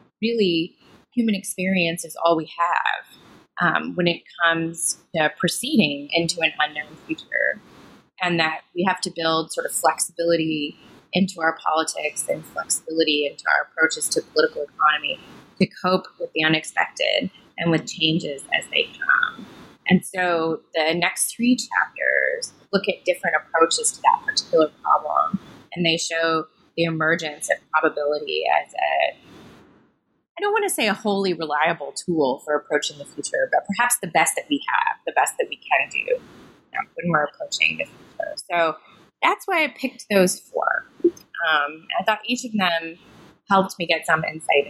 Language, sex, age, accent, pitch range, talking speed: English, female, 20-39, American, 160-245 Hz, 165 wpm